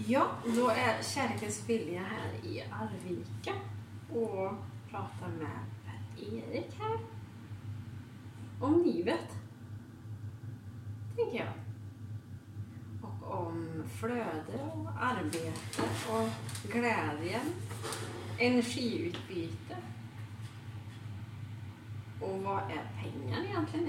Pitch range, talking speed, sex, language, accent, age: 105-115 Hz, 75 wpm, female, Swedish, native, 20-39